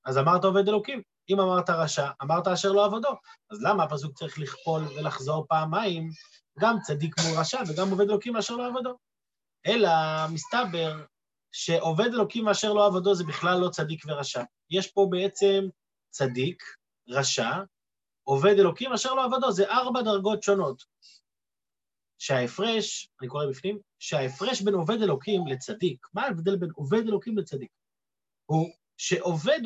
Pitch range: 170-220 Hz